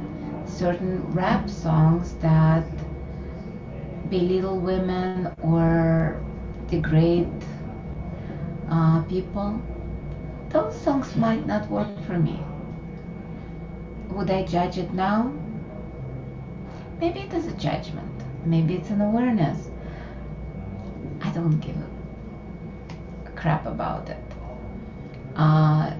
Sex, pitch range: female, 160-185 Hz